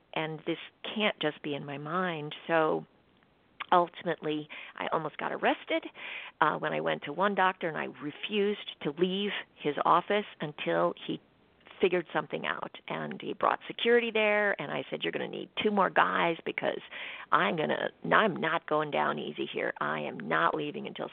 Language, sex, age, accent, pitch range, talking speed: English, female, 50-69, American, 150-200 Hz, 180 wpm